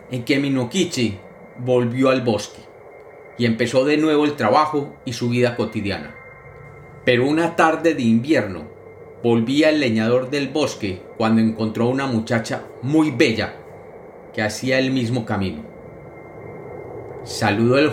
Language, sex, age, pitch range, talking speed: Spanish, male, 40-59, 115-150 Hz, 130 wpm